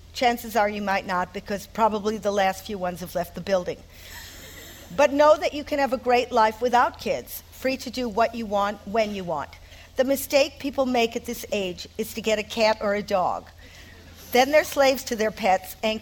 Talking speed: 215 wpm